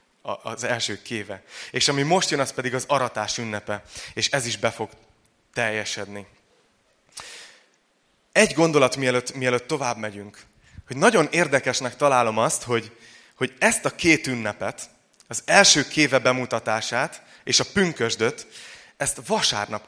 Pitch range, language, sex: 110-140 Hz, Hungarian, male